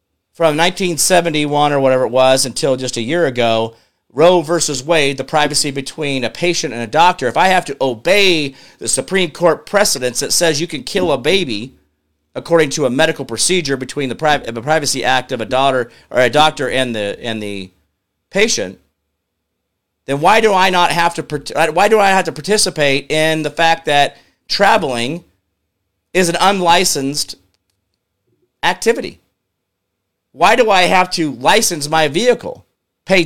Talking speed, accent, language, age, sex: 160 wpm, American, English, 40-59, male